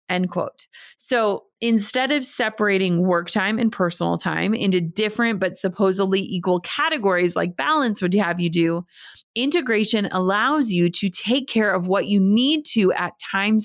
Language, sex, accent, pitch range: English, female, American, 185-240 Hz